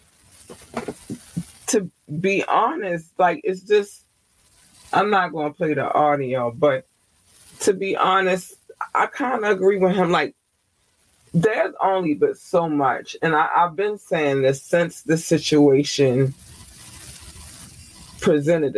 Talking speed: 120 wpm